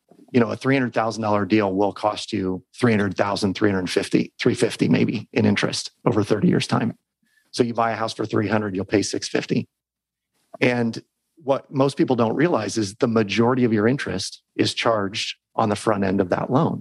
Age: 40-59